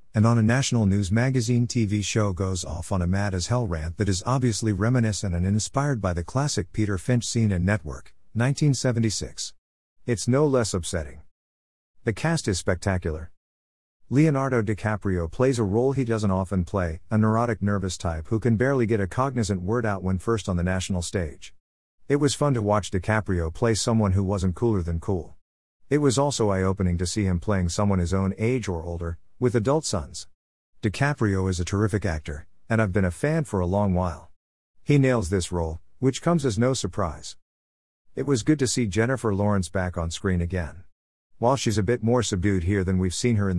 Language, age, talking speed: English, 50-69, 195 wpm